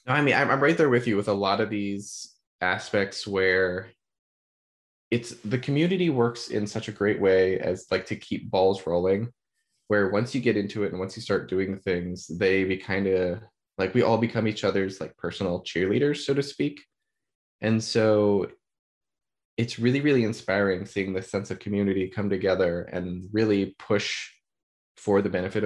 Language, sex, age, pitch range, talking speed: English, male, 20-39, 95-110 Hz, 180 wpm